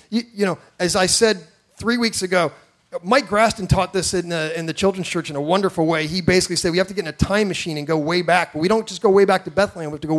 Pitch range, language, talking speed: 180-225 Hz, English, 300 wpm